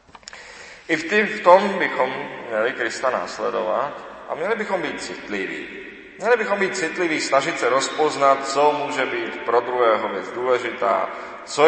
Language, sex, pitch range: Czech, male, 115-155 Hz